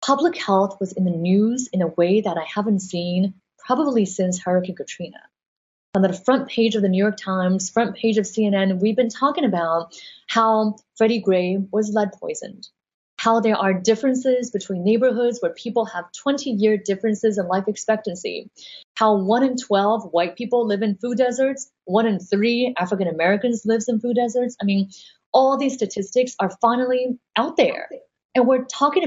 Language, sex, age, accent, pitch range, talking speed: English, female, 30-49, American, 185-240 Hz, 175 wpm